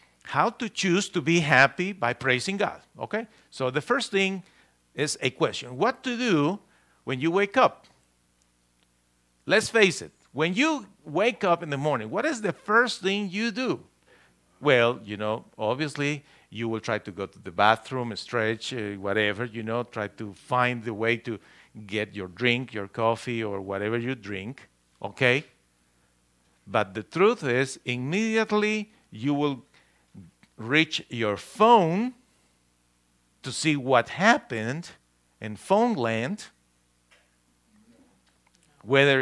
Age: 50-69